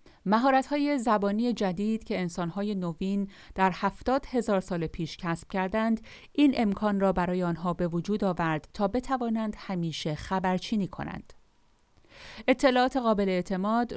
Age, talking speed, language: 40-59, 130 wpm, Persian